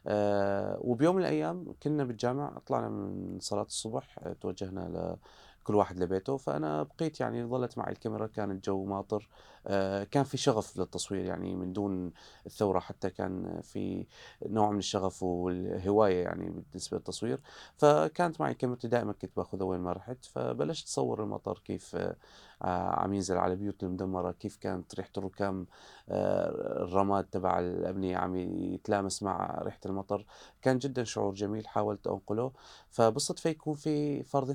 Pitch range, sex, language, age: 95-125 Hz, male, Arabic, 30-49